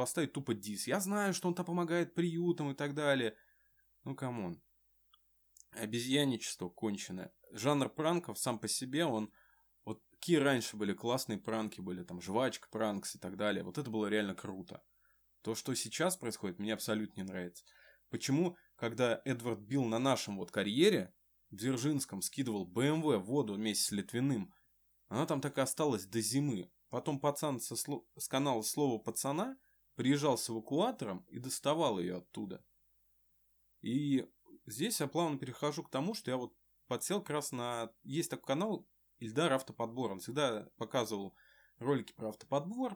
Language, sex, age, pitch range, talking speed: Ukrainian, male, 20-39, 110-150 Hz, 155 wpm